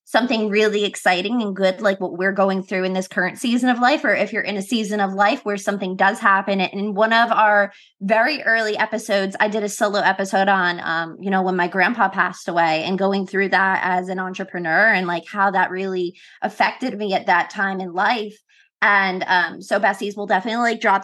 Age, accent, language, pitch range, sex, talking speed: 20-39, American, English, 185-210 Hz, female, 220 wpm